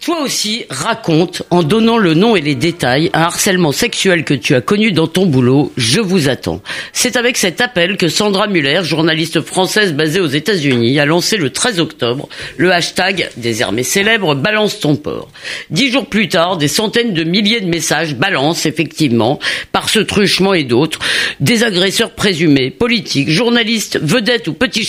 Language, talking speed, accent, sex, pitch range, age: French, 180 wpm, French, female, 155-210 Hz, 50-69